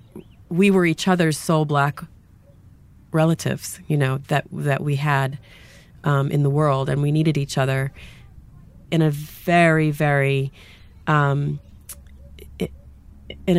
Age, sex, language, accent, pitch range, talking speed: 30-49, female, English, American, 135-175 Hz, 125 wpm